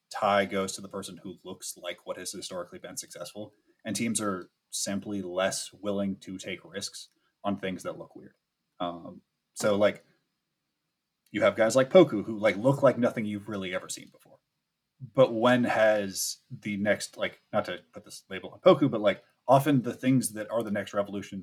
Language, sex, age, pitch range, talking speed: English, male, 30-49, 95-115 Hz, 195 wpm